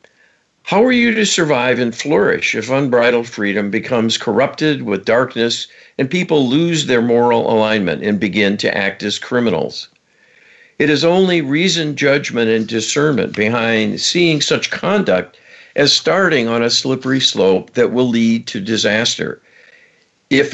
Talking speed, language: 145 wpm, English